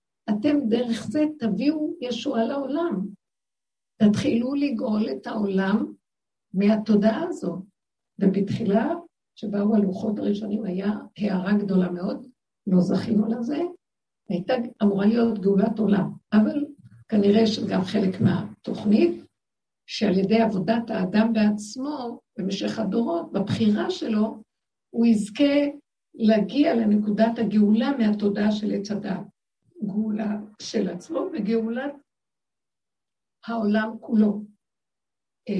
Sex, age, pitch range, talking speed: female, 60-79, 200-230 Hz, 95 wpm